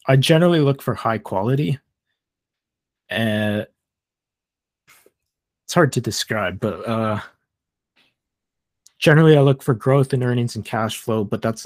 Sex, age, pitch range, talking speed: male, 30-49, 100-130 Hz, 130 wpm